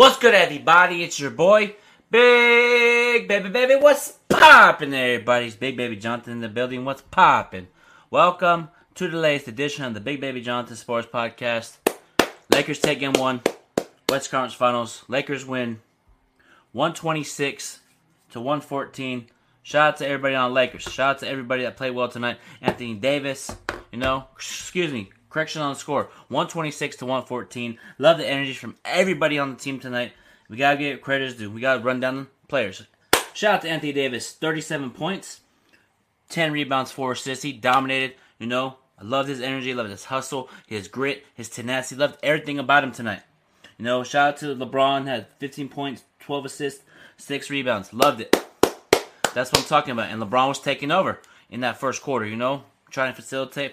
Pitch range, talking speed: 125-145 Hz, 180 wpm